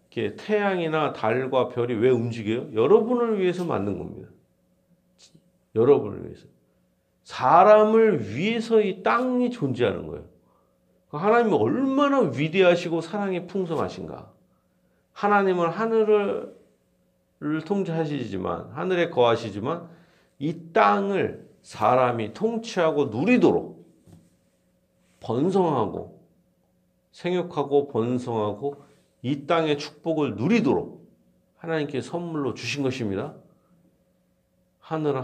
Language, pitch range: Korean, 105-170 Hz